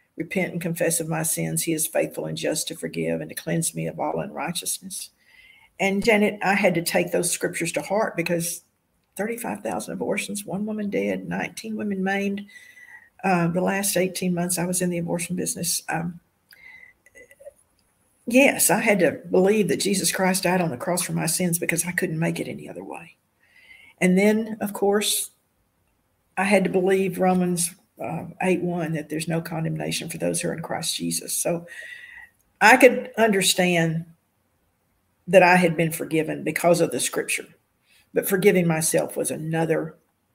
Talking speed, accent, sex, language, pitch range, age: 170 wpm, American, female, English, 165-200 Hz, 50-69